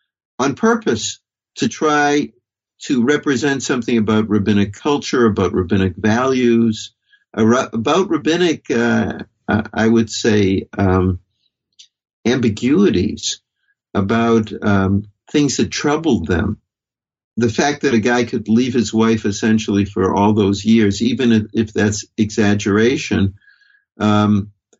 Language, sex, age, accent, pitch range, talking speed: English, male, 60-79, American, 105-140 Hz, 110 wpm